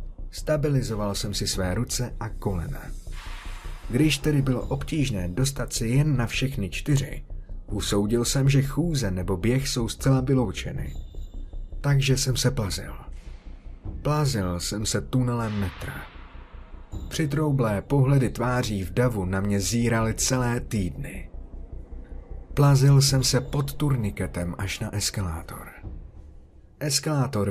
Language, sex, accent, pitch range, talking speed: Czech, male, native, 95-135 Hz, 120 wpm